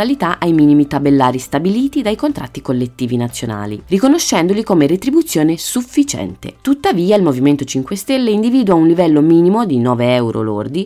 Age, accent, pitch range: 20-39, native, 130-220 Hz